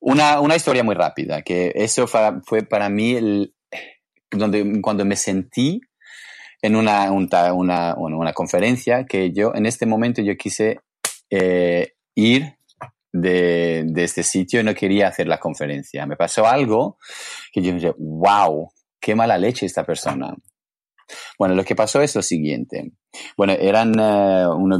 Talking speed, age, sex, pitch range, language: 145 wpm, 30-49, male, 90-115 Hz, Spanish